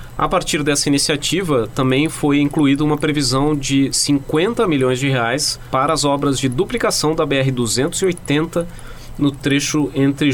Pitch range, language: 125-155 Hz, Portuguese